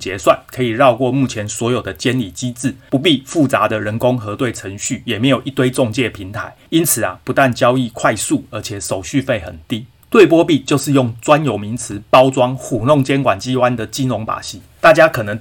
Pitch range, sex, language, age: 110-140 Hz, male, Chinese, 30-49